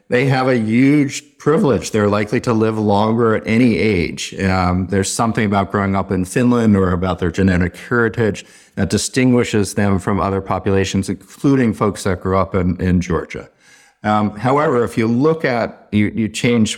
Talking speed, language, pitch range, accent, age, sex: 175 wpm, English, 95-115 Hz, American, 50-69, male